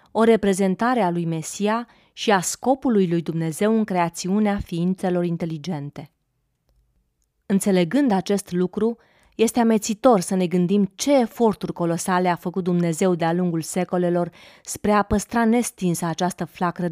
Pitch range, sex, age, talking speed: 175-205 Hz, female, 30-49, 130 wpm